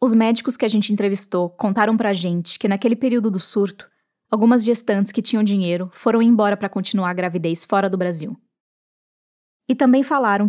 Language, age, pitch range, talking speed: Portuguese, 10-29, 185-235 Hz, 175 wpm